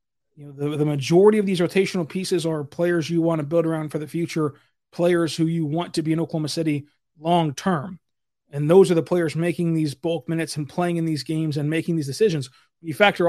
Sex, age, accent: male, 20-39, American